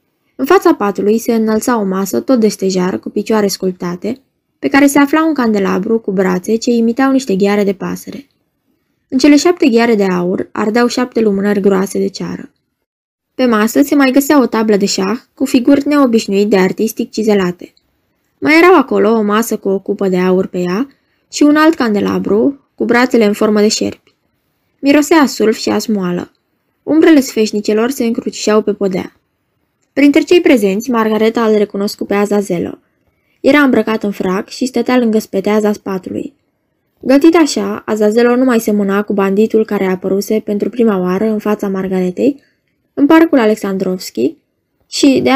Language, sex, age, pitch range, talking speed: Romanian, female, 20-39, 200-260 Hz, 165 wpm